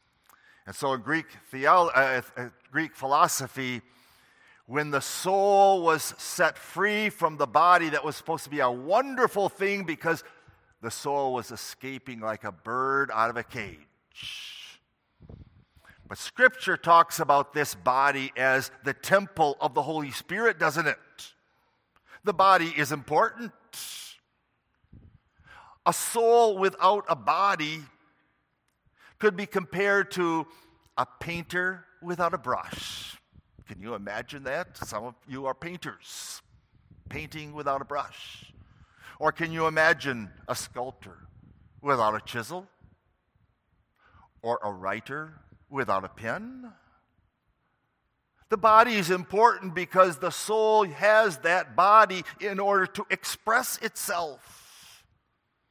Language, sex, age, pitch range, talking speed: English, male, 50-69, 125-185 Hz, 120 wpm